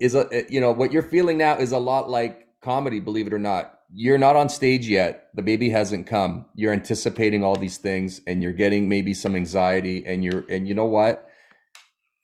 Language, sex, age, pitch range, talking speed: English, male, 30-49, 105-130 Hz, 210 wpm